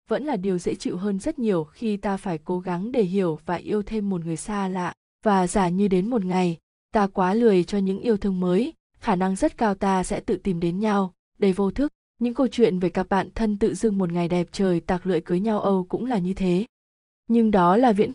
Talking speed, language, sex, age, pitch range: 250 wpm, Vietnamese, female, 20-39, 180-225 Hz